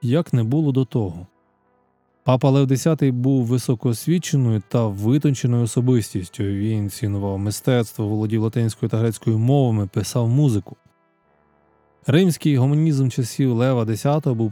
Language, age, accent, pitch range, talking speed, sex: Ukrainian, 20-39, native, 105-135 Hz, 120 wpm, male